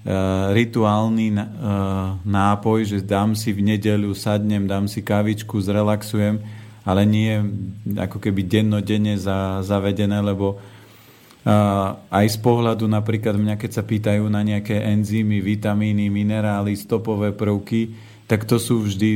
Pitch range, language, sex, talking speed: 105-115 Hz, Slovak, male, 120 wpm